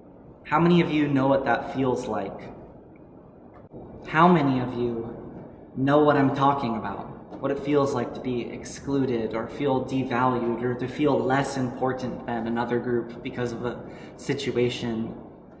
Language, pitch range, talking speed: English, 120-145 Hz, 155 wpm